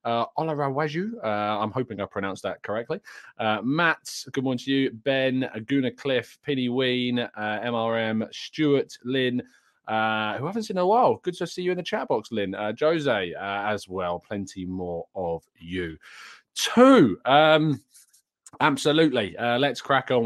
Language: English